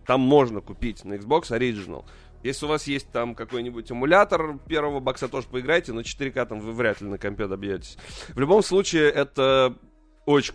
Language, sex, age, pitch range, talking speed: Russian, male, 20-39, 100-130 Hz, 175 wpm